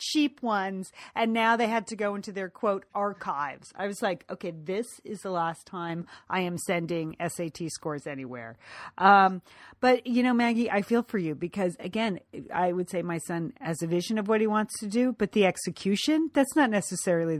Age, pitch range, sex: 40-59, 170-220 Hz, female